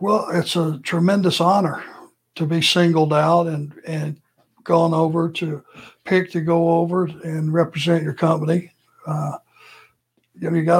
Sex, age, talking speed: male, 60-79, 150 wpm